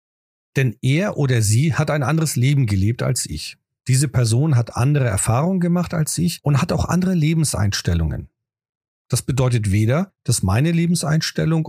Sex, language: male, German